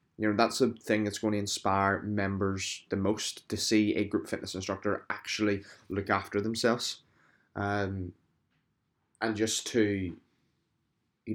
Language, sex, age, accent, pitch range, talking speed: English, male, 20-39, British, 100-110 Hz, 145 wpm